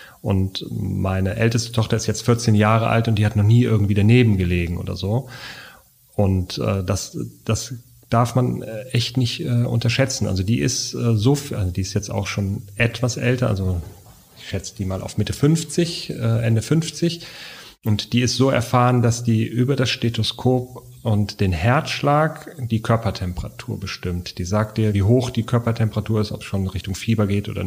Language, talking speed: German, 185 wpm